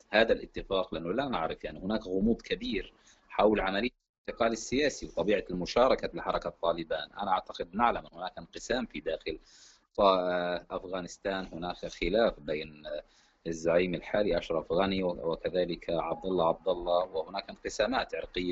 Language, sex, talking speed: Arabic, male, 135 wpm